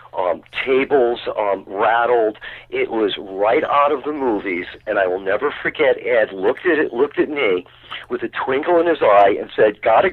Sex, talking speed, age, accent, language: male, 190 wpm, 50-69, American, English